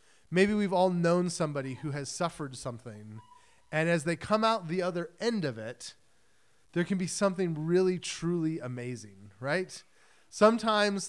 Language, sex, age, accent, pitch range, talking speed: English, male, 30-49, American, 130-185 Hz, 150 wpm